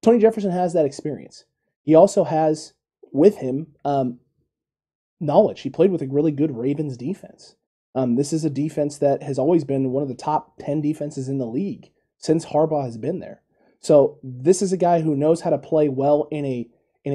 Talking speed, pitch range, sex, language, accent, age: 200 wpm, 135-160 Hz, male, English, American, 20-39